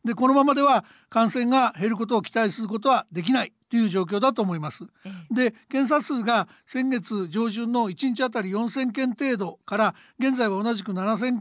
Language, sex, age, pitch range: Japanese, male, 60-79, 210-255 Hz